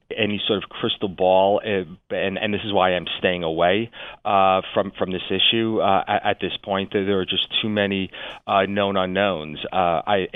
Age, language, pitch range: 40-59, English, 85-100 Hz